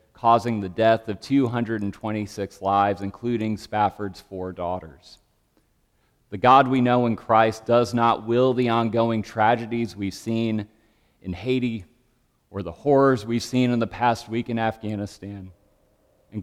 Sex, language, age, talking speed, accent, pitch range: male, English, 40-59, 140 wpm, American, 100-125 Hz